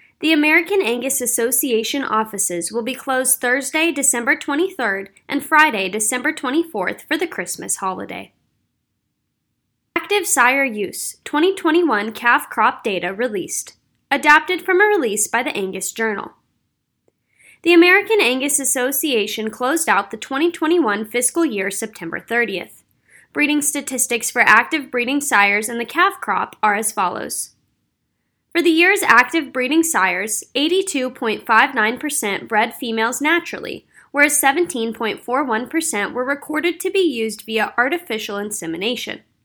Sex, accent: female, American